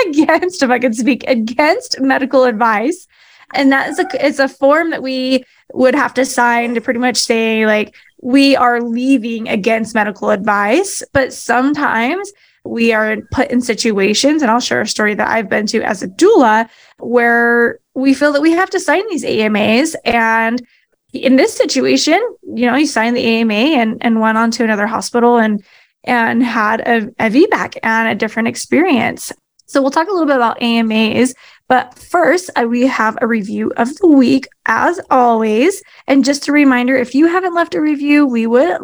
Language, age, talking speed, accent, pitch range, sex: English, 20-39, 185 wpm, American, 225-280 Hz, female